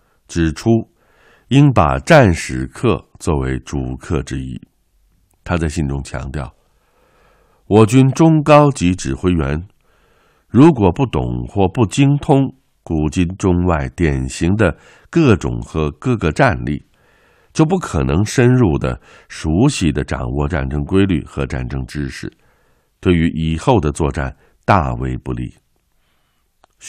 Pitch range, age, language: 70-95 Hz, 60-79, Chinese